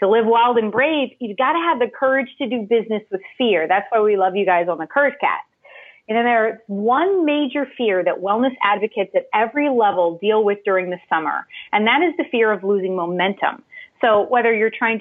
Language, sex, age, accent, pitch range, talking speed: English, female, 30-49, American, 205-285 Hz, 220 wpm